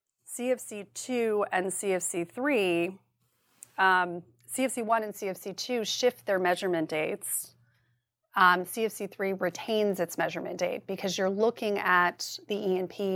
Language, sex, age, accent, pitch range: English, female, 30-49, American, 175-205 Hz